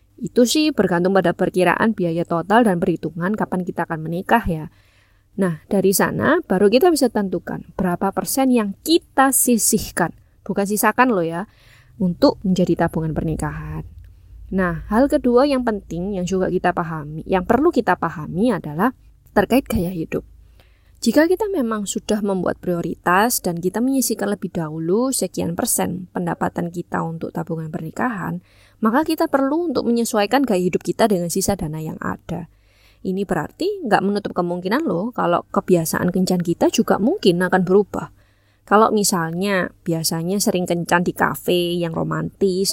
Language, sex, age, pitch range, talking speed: English, female, 20-39, 170-220 Hz, 145 wpm